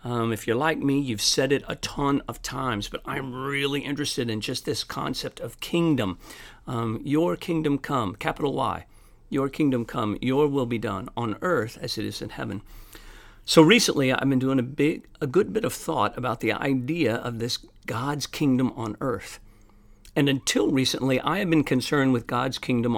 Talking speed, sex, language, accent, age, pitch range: 190 wpm, male, English, American, 50-69, 115-140 Hz